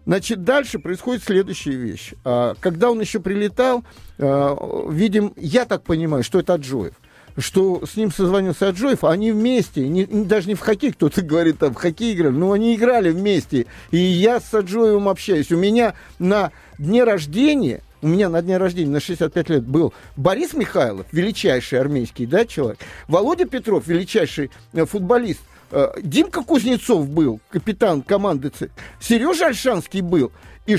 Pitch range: 155-220 Hz